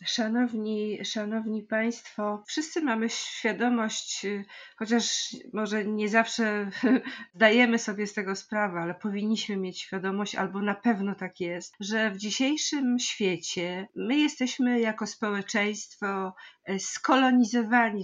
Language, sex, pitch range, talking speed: Polish, female, 200-235 Hz, 110 wpm